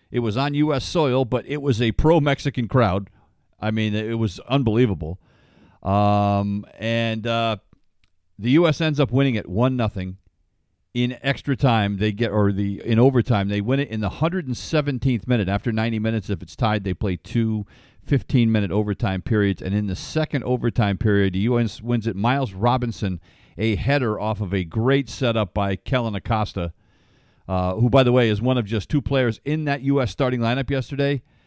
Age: 50-69